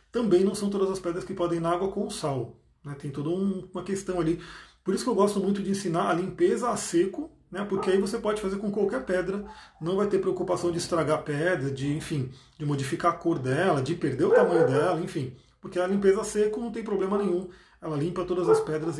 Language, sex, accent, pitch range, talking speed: Portuguese, male, Brazilian, 160-200 Hz, 235 wpm